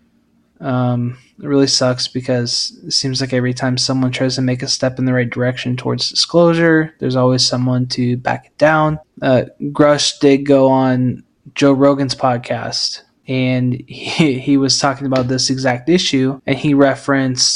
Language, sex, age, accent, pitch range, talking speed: English, male, 20-39, American, 125-140 Hz, 170 wpm